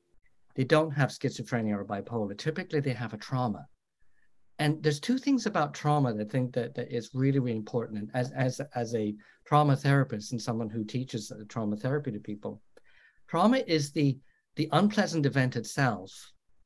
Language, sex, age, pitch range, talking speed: English, male, 50-69, 110-140 Hz, 175 wpm